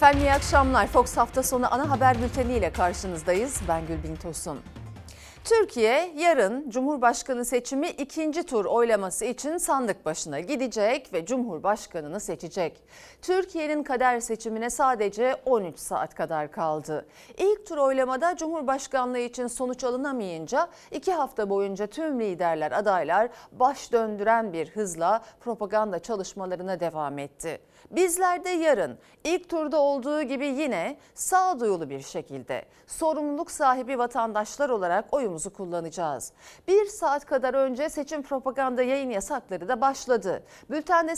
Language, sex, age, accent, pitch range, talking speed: Turkish, female, 40-59, native, 205-295 Hz, 120 wpm